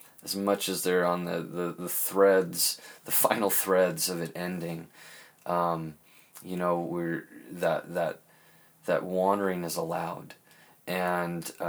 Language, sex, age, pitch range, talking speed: English, male, 20-39, 85-100 Hz, 135 wpm